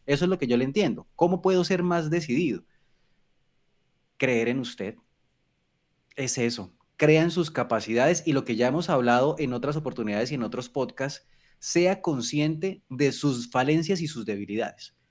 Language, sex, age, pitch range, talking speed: Spanish, male, 30-49, 120-160 Hz, 165 wpm